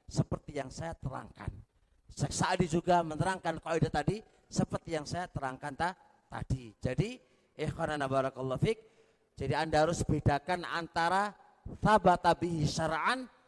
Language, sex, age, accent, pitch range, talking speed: Indonesian, male, 40-59, native, 145-215 Hz, 105 wpm